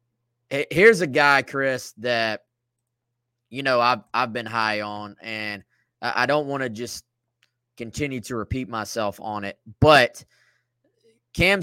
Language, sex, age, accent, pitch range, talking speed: English, male, 20-39, American, 120-140 Hz, 135 wpm